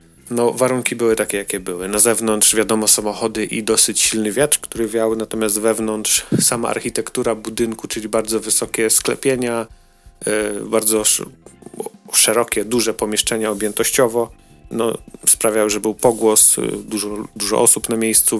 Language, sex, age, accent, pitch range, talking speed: Polish, male, 30-49, native, 105-115 Hz, 140 wpm